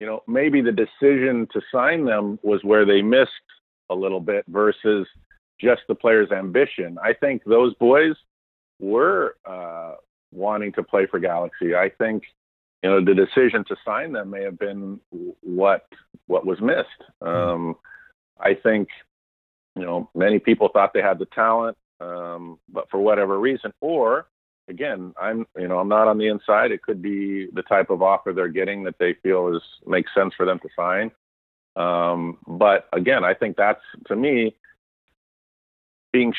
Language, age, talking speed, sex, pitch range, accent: English, 50-69, 170 wpm, male, 90-110 Hz, American